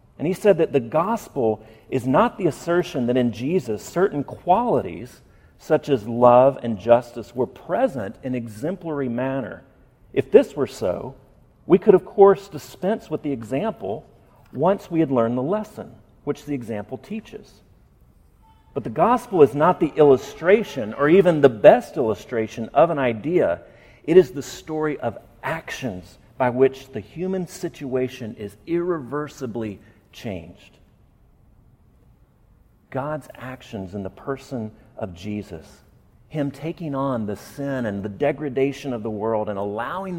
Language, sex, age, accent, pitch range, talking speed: English, male, 40-59, American, 110-155 Hz, 145 wpm